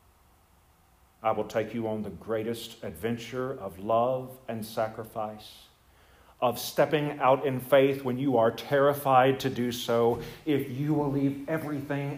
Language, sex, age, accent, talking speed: English, male, 50-69, American, 145 wpm